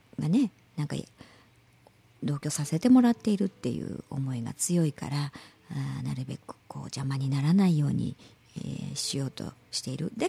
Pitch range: 140-235 Hz